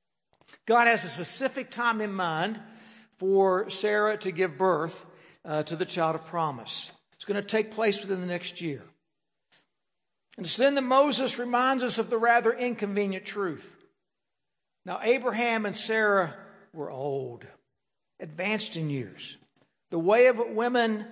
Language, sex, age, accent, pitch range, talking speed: English, male, 60-79, American, 180-240 Hz, 150 wpm